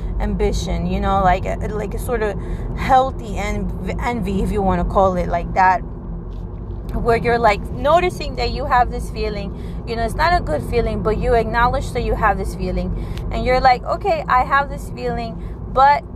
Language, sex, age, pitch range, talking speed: English, female, 20-39, 190-265 Hz, 195 wpm